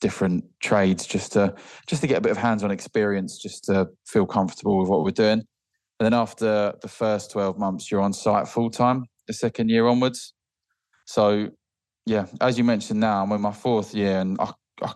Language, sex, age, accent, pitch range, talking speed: English, male, 20-39, British, 95-110 Hz, 200 wpm